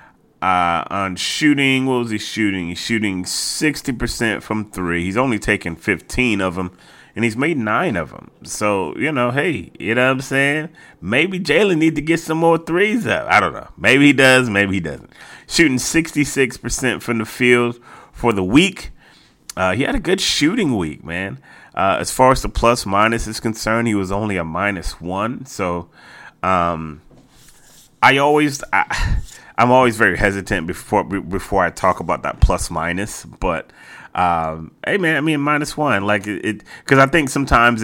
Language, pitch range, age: English, 85-125 Hz, 30-49